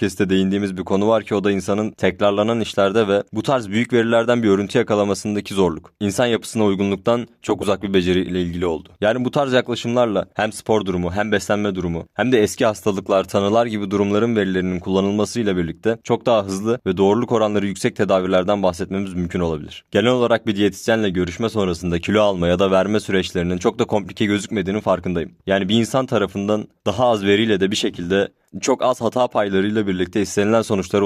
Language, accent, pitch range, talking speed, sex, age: Turkish, native, 95-115 Hz, 185 wpm, male, 30-49